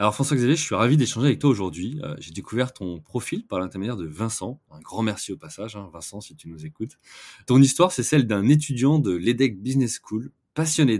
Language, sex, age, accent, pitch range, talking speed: French, male, 20-39, French, 95-130 Hz, 215 wpm